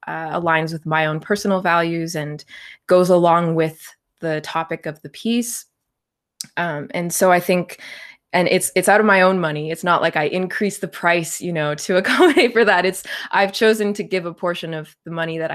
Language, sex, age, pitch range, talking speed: English, female, 20-39, 155-190 Hz, 205 wpm